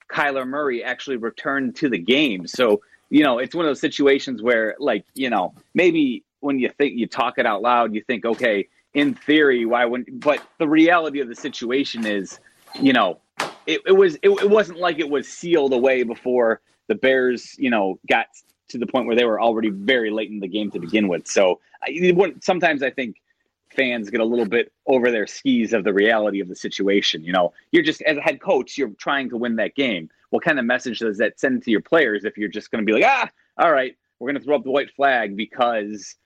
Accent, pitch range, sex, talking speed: American, 115-170 Hz, male, 225 wpm